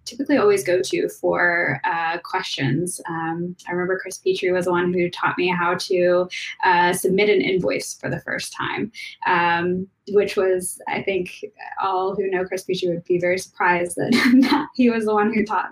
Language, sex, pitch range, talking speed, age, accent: English, female, 180-235 Hz, 190 wpm, 10-29, American